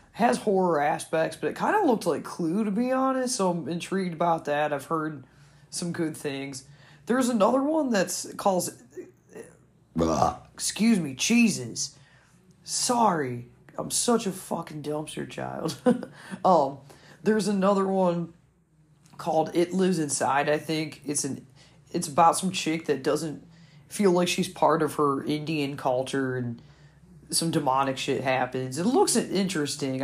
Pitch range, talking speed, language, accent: 140-185 Hz, 145 wpm, English, American